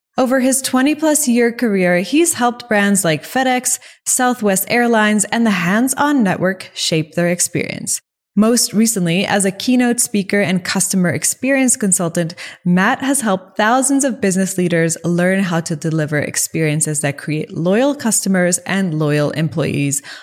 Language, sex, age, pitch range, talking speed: English, female, 20-39, 175-240 Hz, 140 wpm